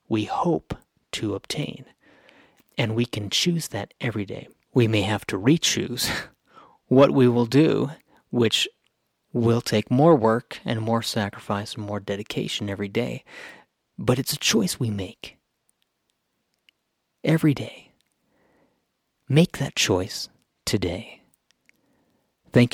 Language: English